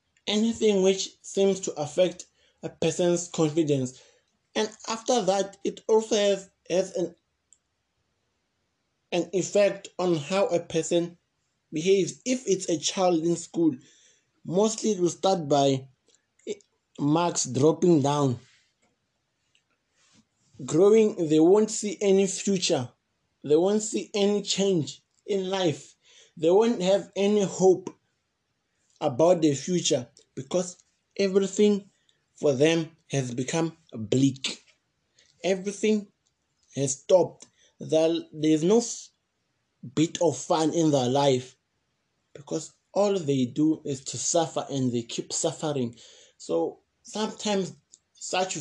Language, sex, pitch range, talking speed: English, male, 145-195 Hz, 110 wpm